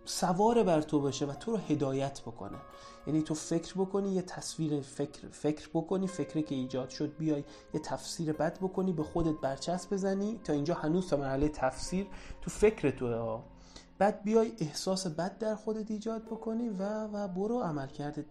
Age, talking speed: 30-49, 175 wpm